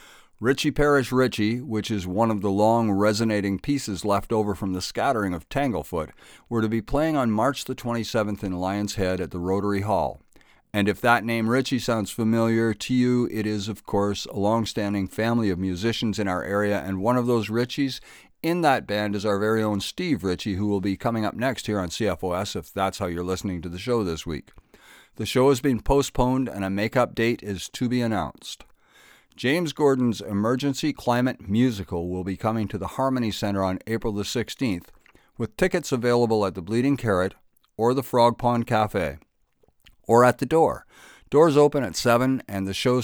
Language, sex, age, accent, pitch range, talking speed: English, male, 60-79, American, 100-120 Hz, 195 wpm